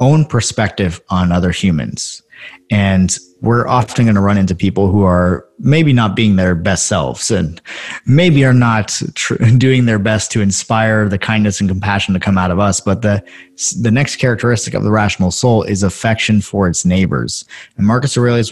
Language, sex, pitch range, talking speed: English, male, 90-115 Hz, 185 wpm